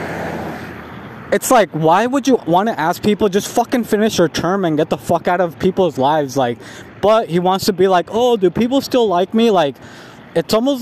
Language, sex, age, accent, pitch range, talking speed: English, male, 20-39, American, 155-200 Hz, 210 wpm